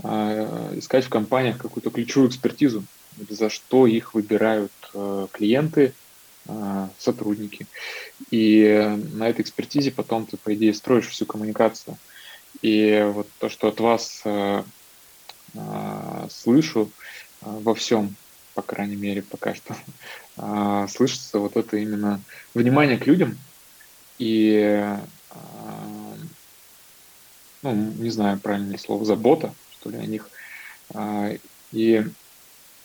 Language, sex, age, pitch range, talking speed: Russian, male, 20-39, 105-115 Hz, 100 wpm